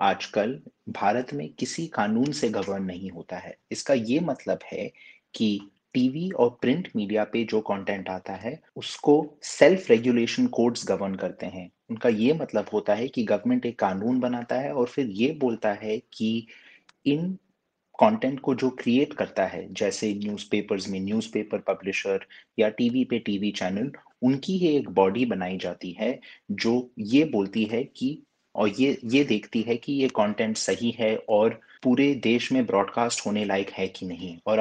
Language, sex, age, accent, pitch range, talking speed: Hindi, male, 30-49, native, 105-140 Hz, 170 wpm